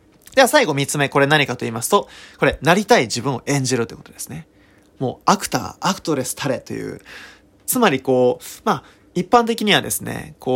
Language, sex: Japanese, male